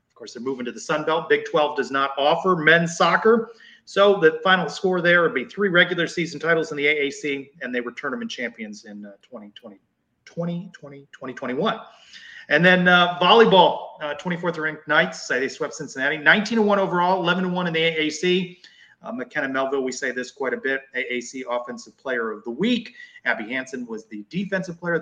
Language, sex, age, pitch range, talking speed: English, male, 30-49, 140-200 Hz, 180 wpm